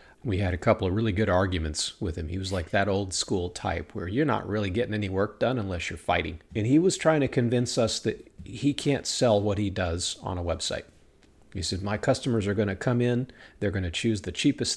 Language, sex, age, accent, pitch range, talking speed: English, male, 40-59, American, 90-120 Hz, 235 wpm